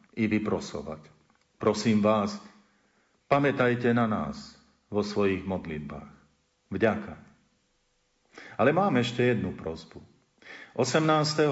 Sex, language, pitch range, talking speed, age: male, Slovak, 110-130 Hz, 90 wpm, 50-69